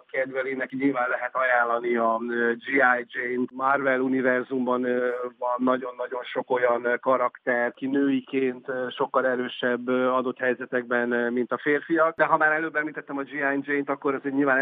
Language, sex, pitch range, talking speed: Hungarian, male, 125-140 Hz, 140 wpm